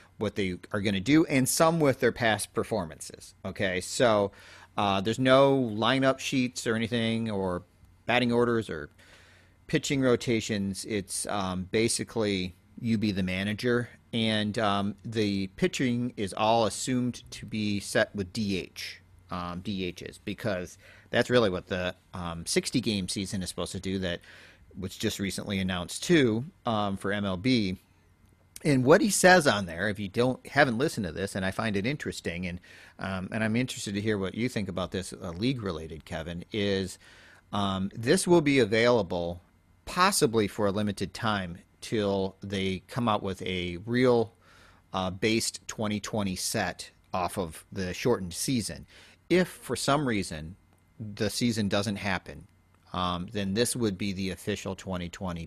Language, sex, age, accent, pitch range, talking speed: English, male, 40-59, American, 90-115 Hz, 160 wpm